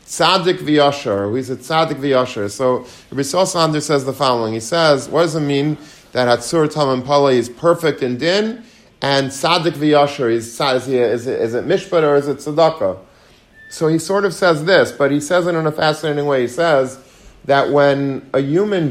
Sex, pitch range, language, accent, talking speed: male, 120-155 Hz, English, American, 185 wpm